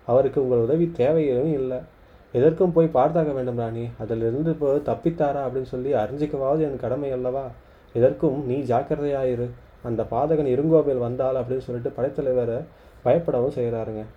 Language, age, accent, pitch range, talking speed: Tamil, 20-39, native, 120-150 Hz, 125 wpm